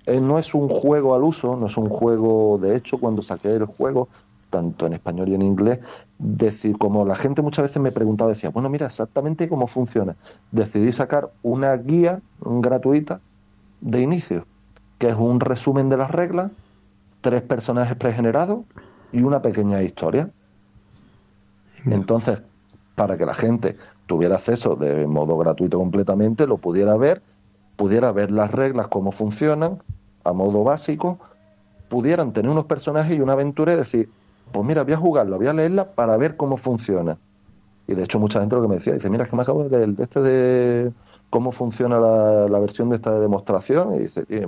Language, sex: Spanish, male